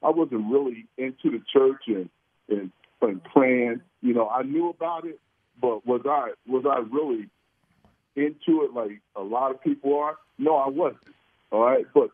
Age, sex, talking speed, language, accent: 50-69, male, 180 wpm, English, American